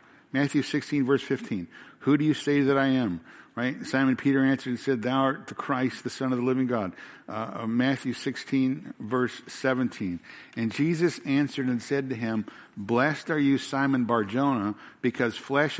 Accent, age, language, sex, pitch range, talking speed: American, 60-79, English, male, 115-135 Hz, 175 wpm